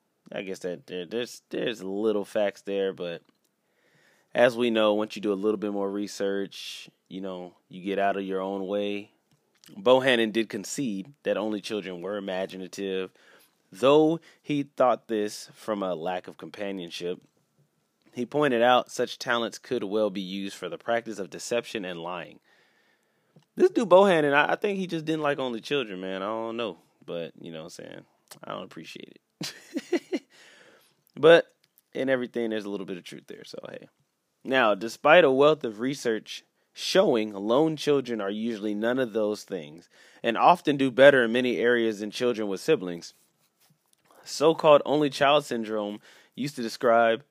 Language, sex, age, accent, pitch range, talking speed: English, male, 30-49, American, 100-135 Hz, 165 wpm